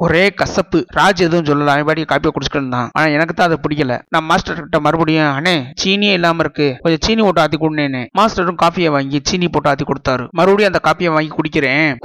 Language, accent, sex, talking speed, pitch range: Tamil, native, male, 175 wpm, 145-180 Hz